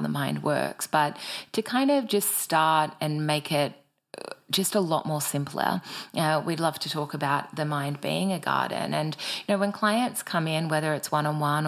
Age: 30-49